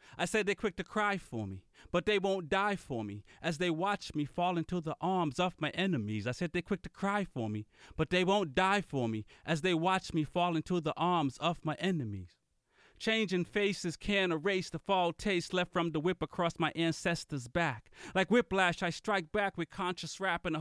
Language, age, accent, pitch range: English, 30-49, American, 150-185 Hz